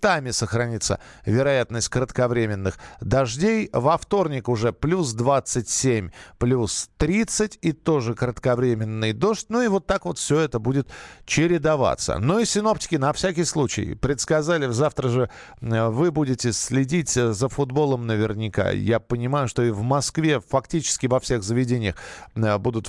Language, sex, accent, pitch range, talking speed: Russian, male, native, 115-155 Hz, 130 wpm